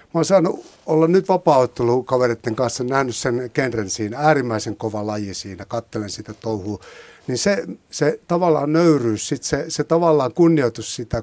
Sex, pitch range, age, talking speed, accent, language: male, 110-155 Hz, 60-79, 155 wpm, native, Finnish